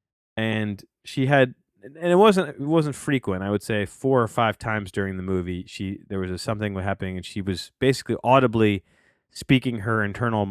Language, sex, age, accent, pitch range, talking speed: English, male, 30-49, American, 105-145 Hz, 195 wpm